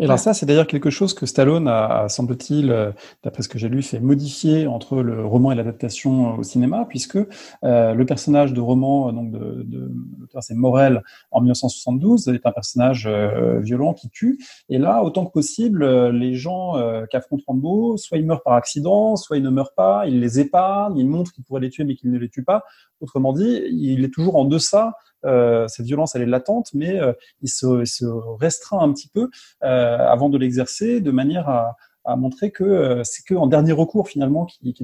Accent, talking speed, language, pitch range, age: French, 210 wpm, English, 125-165 Hz, 30-49